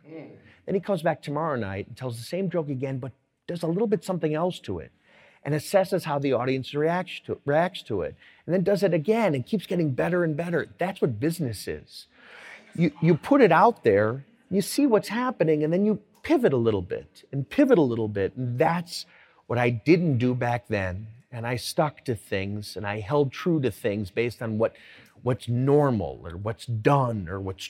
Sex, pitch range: male, 120-170 Hz